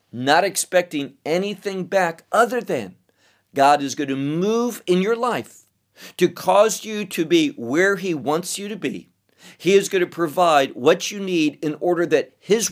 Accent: American